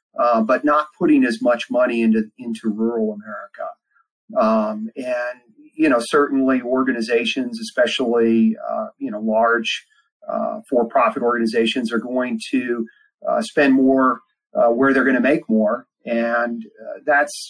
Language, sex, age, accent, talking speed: English, male, 40-59, American, 145 wpm